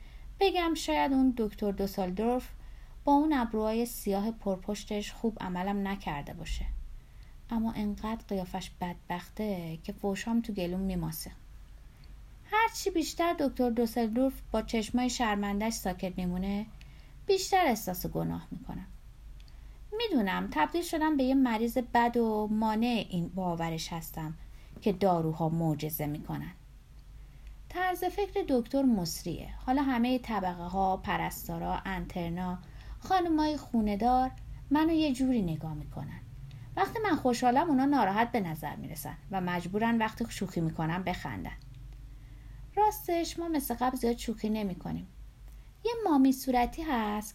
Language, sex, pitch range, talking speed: Persian, female, 175-260 Hz, 125 wpm